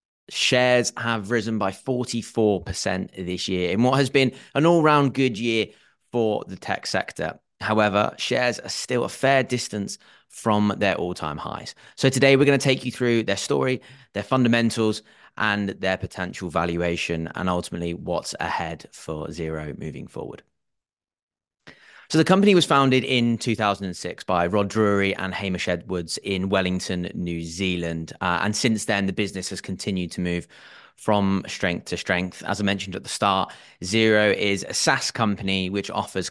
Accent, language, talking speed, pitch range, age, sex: British, English, 160 wpm, 95-115 Hz, 30-49, male